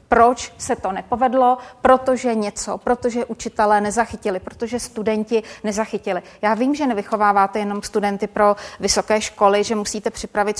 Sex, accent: female, native